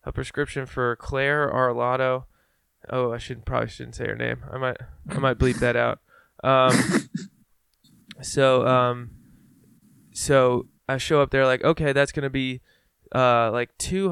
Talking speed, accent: 155 wpm, American